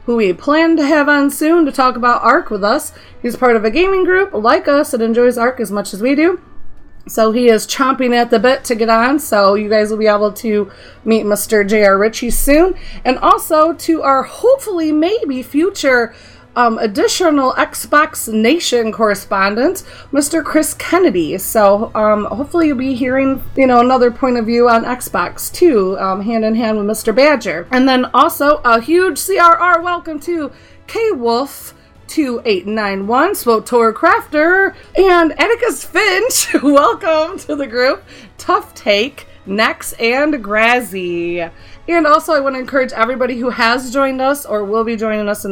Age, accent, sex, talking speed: 30-49, American, female, 170 wpm